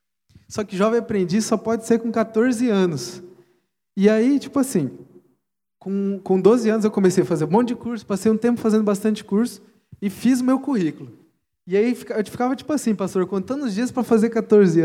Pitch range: 175-225 Hz